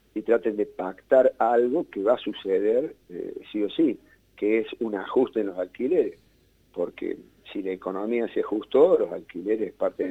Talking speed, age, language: 180 wpm, 50-69, Spanish